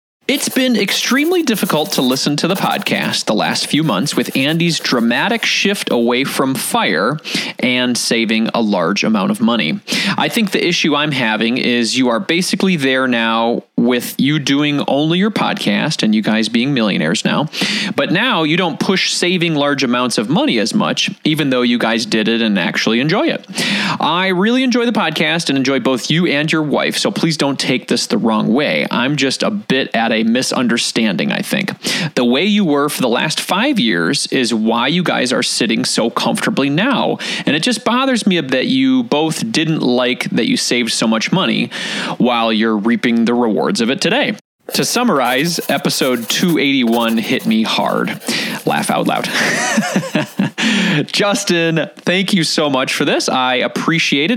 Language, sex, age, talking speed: English, male, 20-39, 180 wpm